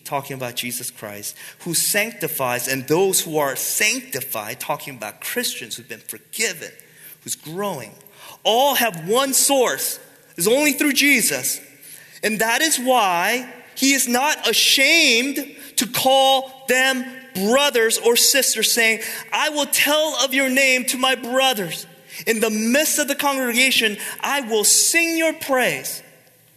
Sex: male